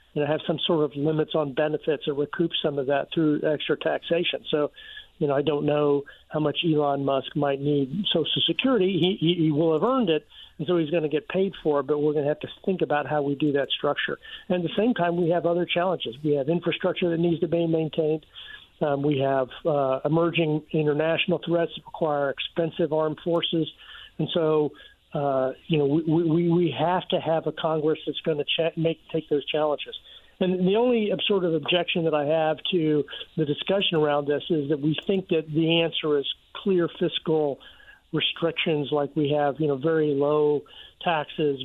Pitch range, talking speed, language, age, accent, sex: 150-170 Hz, 205 wpm, English, 50-69, American, male